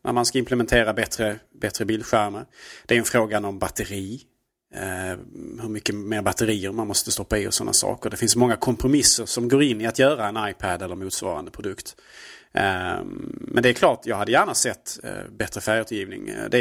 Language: Swedish